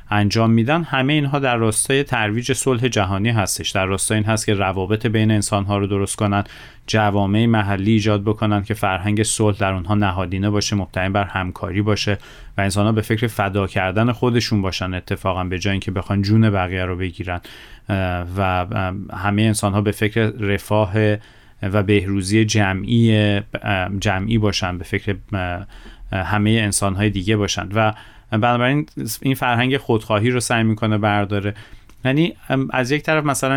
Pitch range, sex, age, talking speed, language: 100-115 Hz, male, 30-49, 155 wpm, Persian